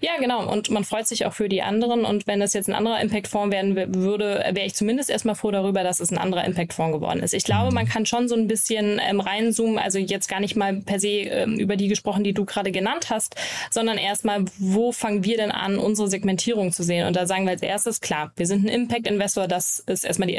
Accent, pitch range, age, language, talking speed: German, 190-220 Hz, 10-29, German, 240 wpm